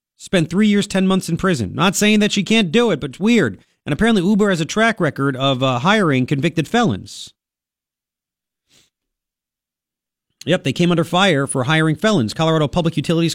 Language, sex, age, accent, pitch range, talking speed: English, male, 40-59, American, 125-170 Hz, 180 wpm